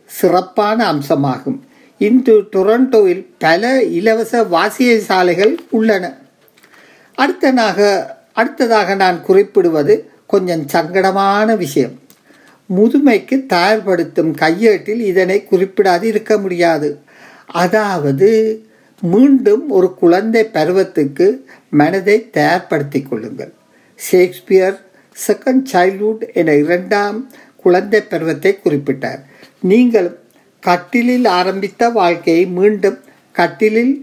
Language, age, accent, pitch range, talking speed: Tamil, 50-69, native, 180-225 Hz, 80 wpm